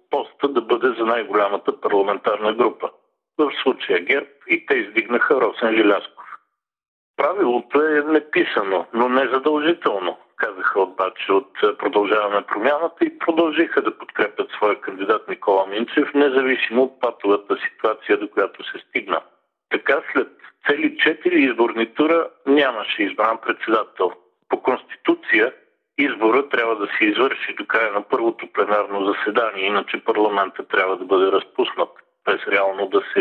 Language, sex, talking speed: Bulgarian, male, 130 wpm